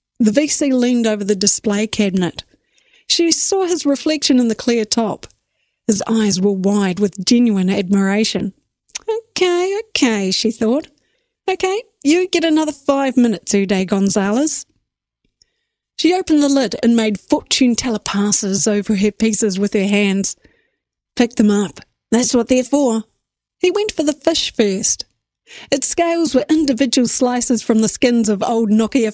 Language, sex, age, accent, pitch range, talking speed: English, female, 40-59, Australian, 210-285 Hz, 150 wpm